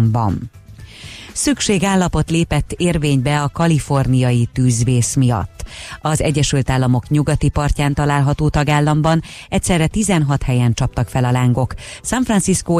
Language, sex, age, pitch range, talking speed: Hungarian, female, 30-49, 125-155 Hz, 110 wpm